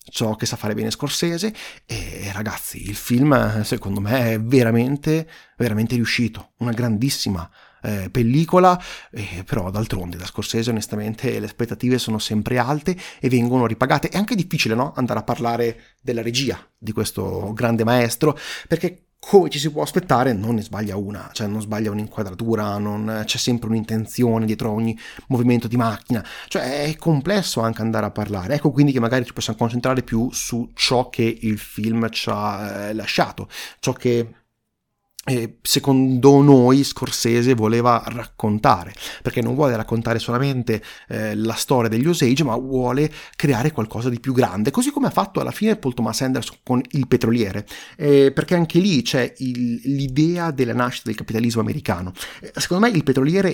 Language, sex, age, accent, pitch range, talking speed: Italian, male, 30-49, native, 110-135 Hz, 160 wpm